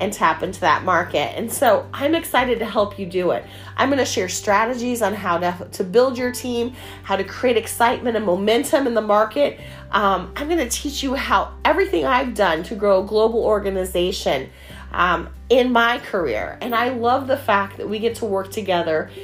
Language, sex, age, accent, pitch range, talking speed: English, female, 30-49, American, 195-240 Hz, 205 wpm